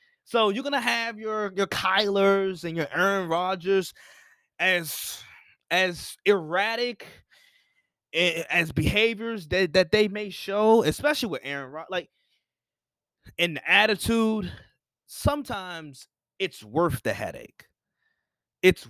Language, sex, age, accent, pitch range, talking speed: English, male, 20-39, American, 155-210 Hz, 115 wpm